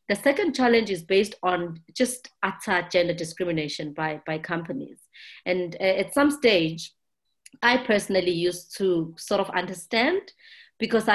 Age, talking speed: 30-49, 135 wpm